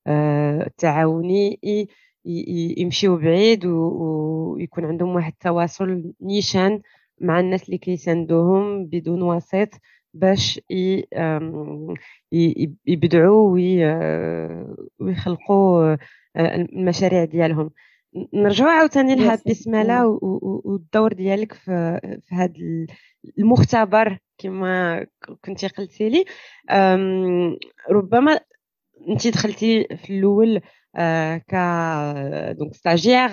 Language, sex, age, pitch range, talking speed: Arabic, female, 20-39, 165-210 Hz, 70 wpm